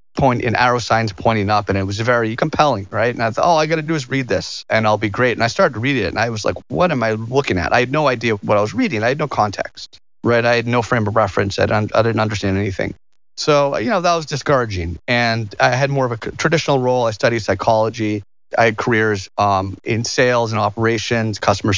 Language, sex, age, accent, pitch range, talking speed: English, male, 30-49, American, 105-135 Hz, 245 wpm